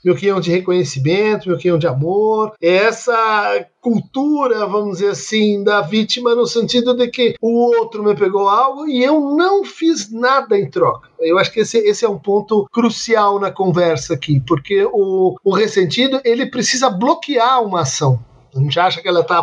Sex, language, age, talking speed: male, Portuguese, 50-69, 175 wpm